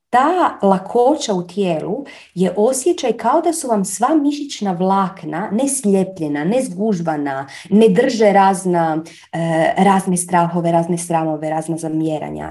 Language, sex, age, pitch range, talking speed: Croatian, female, 30-49, 170-220 Hz, 115 wpm